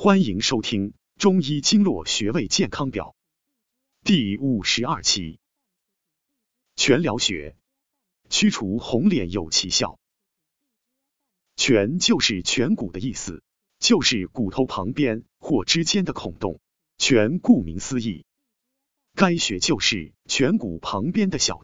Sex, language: male, Chinese